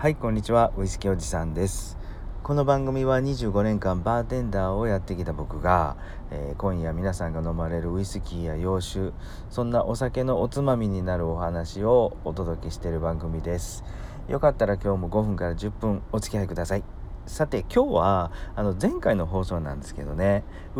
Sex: male